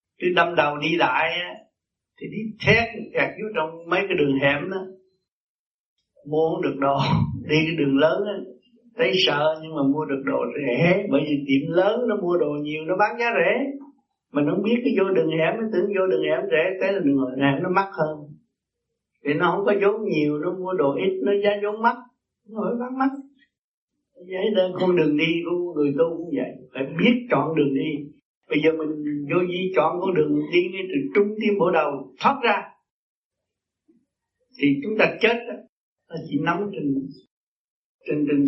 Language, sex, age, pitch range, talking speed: Vietnamese, male, 60-79, 150-205 Hz, 195 wpm